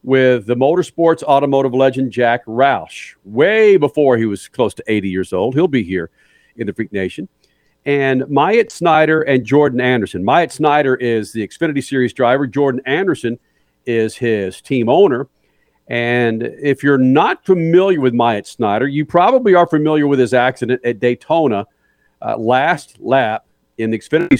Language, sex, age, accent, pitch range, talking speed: English, male, 50-69, American, 120-170 Hz, 160 wpm